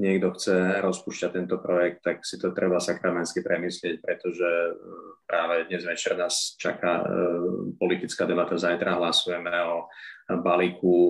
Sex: male